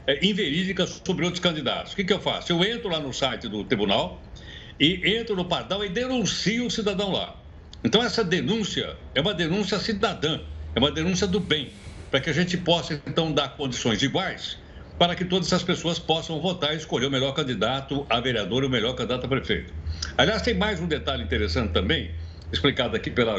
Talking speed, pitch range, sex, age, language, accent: 195 wpm, 125-205 Hz, male, 60-79, Portuguese, Brazilian